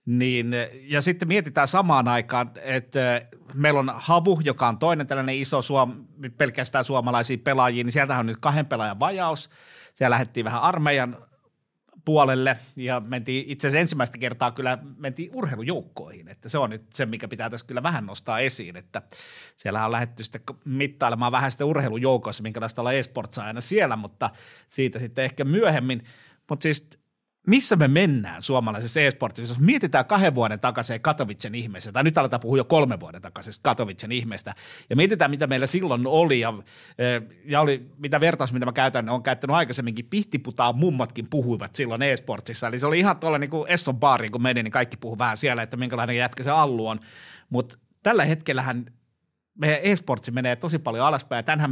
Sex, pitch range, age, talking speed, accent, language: male, 120-150 Hz, 30-49, 175 wpm, native, Finnish